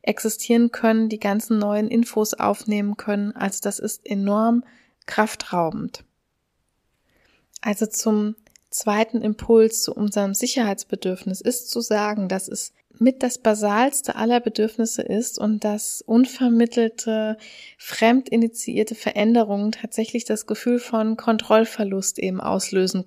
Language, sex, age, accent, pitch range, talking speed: German, female, 20-39, German, 205-235 Hz, 110 wpm